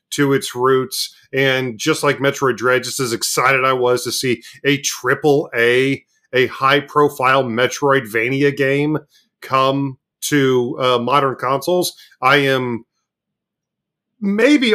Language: English